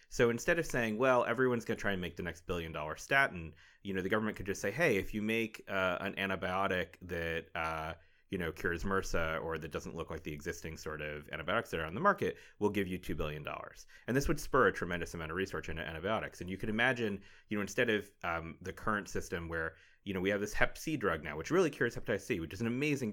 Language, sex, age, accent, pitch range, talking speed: English, male, 30-49, American, 85-110 Hz, 255 wpm